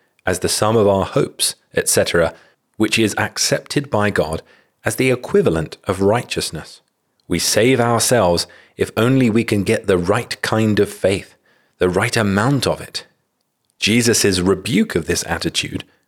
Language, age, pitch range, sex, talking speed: English, 40-59, 95-130 Hz, male, 150 wpm